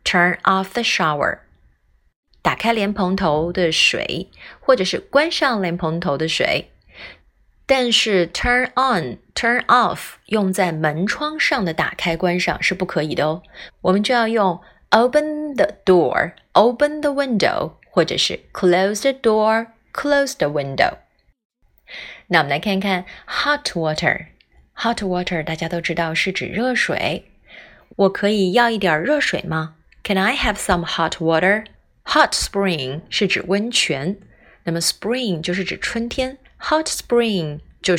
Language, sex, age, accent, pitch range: Chinese, female, 20-39, native, 165-230 Hz